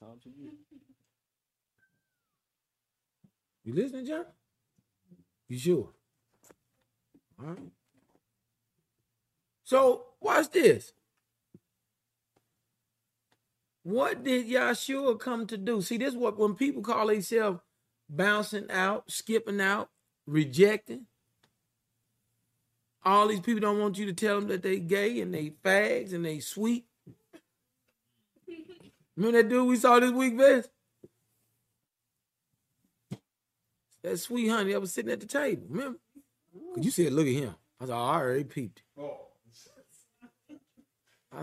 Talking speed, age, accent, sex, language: 115 wpm, 50-69, American, male, English